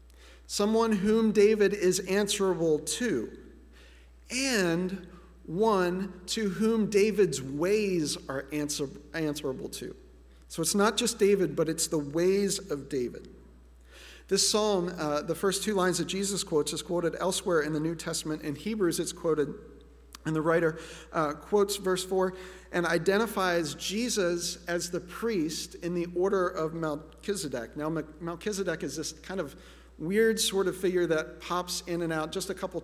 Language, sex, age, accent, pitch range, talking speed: English, male, 40-59, American, 155-195 Hz, 150 wpm